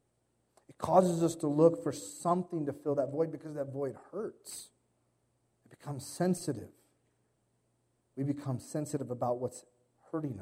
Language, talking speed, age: English, 140 wpm, 40-59